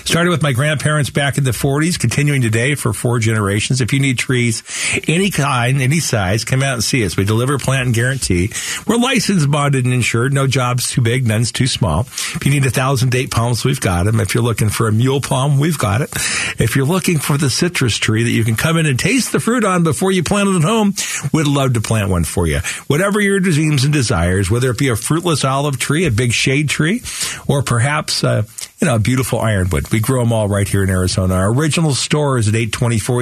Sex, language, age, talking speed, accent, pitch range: male, English, 50-69, 235 wpm, American, 120-160 Hz